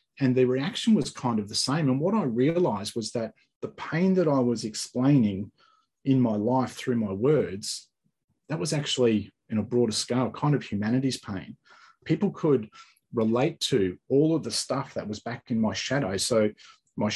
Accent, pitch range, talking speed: Australian, 110-140 Hz, 190 wpm